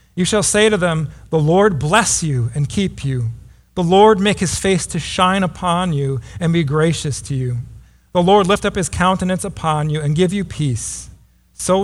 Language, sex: English, male